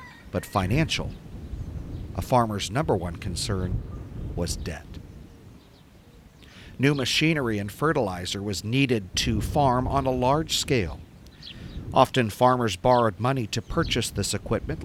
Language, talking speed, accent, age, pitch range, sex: English, 115 wpm, American, 50-69, 95-130 Hz, male